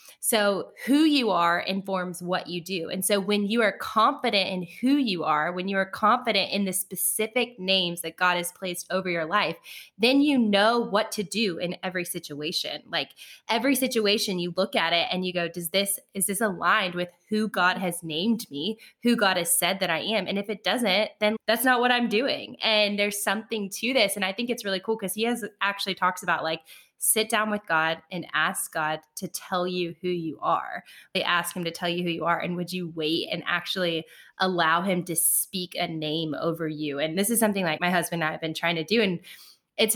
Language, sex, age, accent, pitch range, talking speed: English, female, 10-29, American, 175-215 Hz, 225 wpm